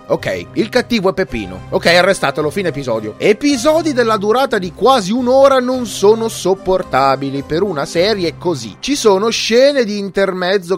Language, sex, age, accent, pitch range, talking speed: Italian, male, 30-49, native, 170-250 Hz, 150 wpm